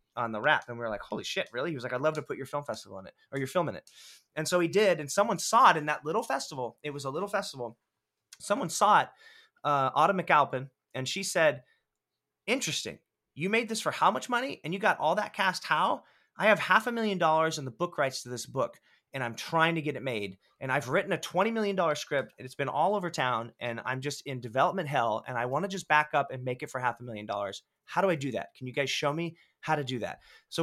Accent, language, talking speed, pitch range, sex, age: American, English, 270 wpm, 130-175 Hz, male, 30-49